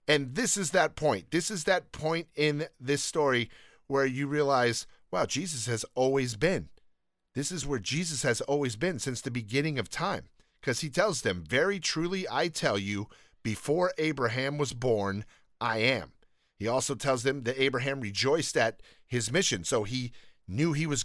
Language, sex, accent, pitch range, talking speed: English, male, American, 135-180 Hz, 175 wpm